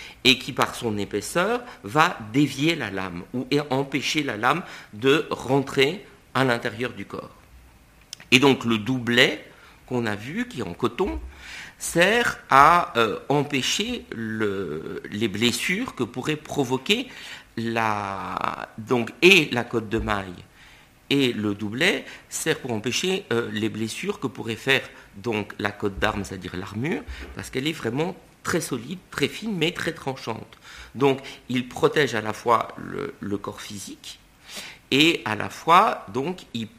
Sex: male